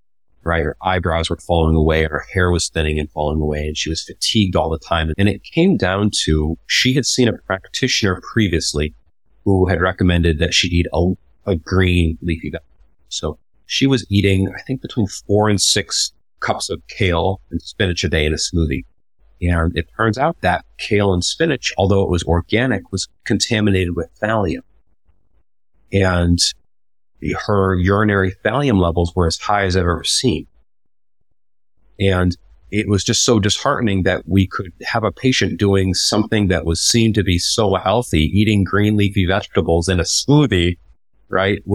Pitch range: 85-100 Hz